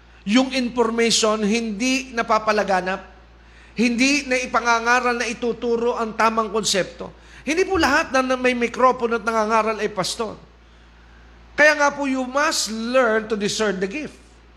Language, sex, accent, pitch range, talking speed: Filipino, male, native, 200-250 Hz, 140 wpm